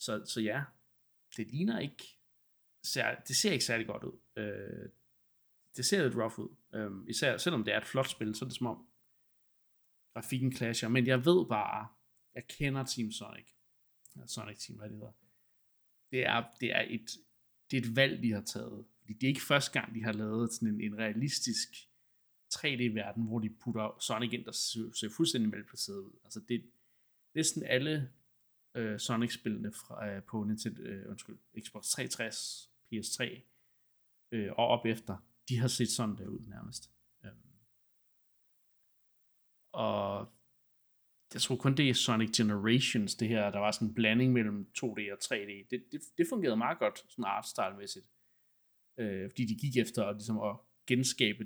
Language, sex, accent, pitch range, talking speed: Danish, male, native, 110-125 Hz, 180 wpm